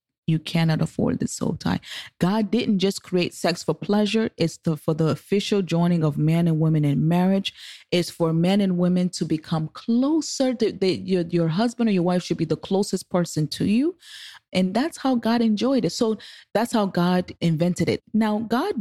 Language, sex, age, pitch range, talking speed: English, female, 30-49, 160-195 Hz, 200 wpm